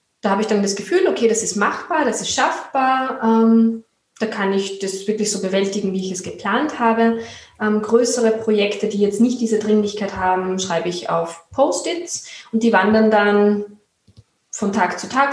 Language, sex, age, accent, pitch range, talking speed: German, female, 20-39, German, 190-225 Hz, 175 wpm